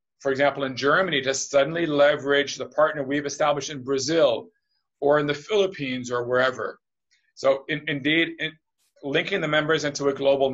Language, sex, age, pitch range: English, male, 40-59, 140-175 Hz